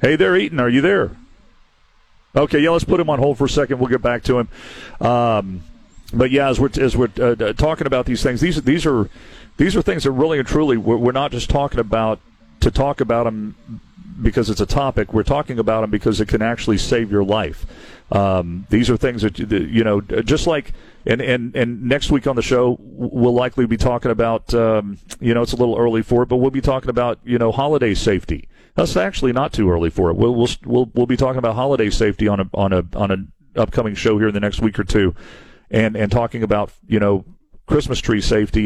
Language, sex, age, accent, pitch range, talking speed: English, male, 40-59, American, 105-135 Hz, 230 wpm